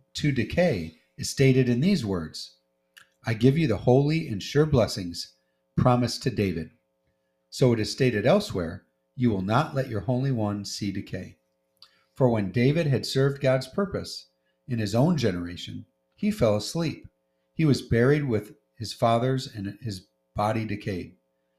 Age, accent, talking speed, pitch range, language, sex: 40-59, American, 155 wpm, 90-130 Hz, English, male